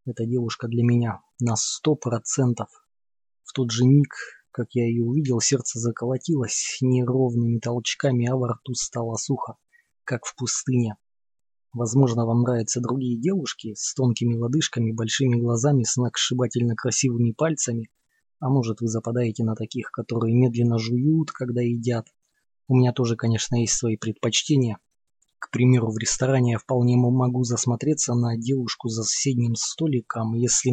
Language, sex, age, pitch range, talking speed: Russian, male, 20-39, 120-130 Hz, 145 wpm